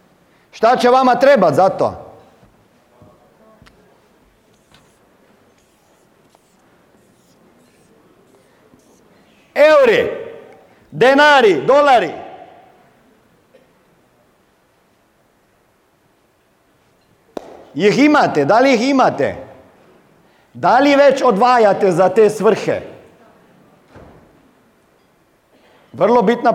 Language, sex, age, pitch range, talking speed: Croatian, male, 50-69, 150-250 Hz, 55 wpm